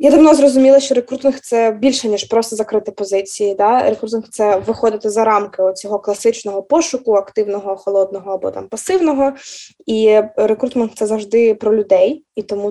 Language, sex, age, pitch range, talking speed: Ukrainian, female, 20-39, 210-245 Hz, 155 wpm